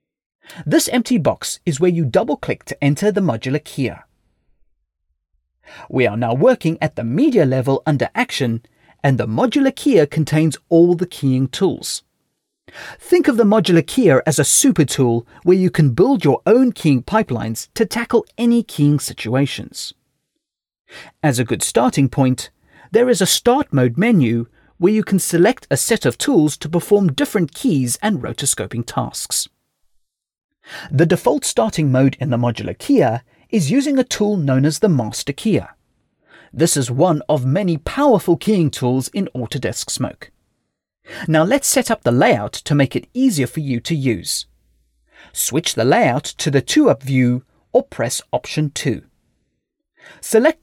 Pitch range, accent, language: 125-200 Hz, British, English